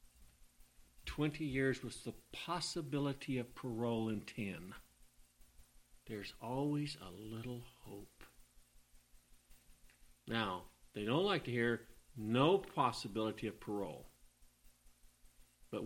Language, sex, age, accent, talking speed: English, male, 50-69, American, 95 wpm